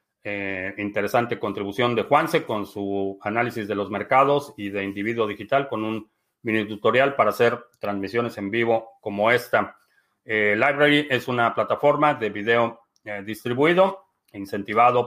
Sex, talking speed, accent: male, 145 wpm, Mexican